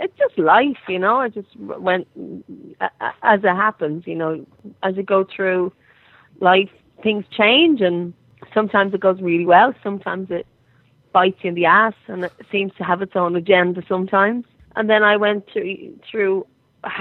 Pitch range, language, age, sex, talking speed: 175-215 Hz, English, 30-49, female, 170 wpm